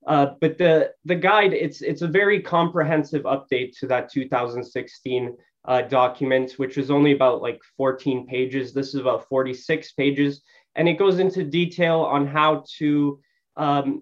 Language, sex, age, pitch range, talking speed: English, male, 20-39, 130-160 Hz, 160 wpm